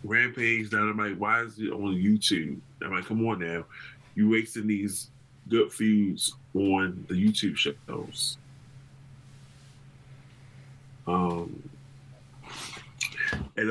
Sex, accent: male, American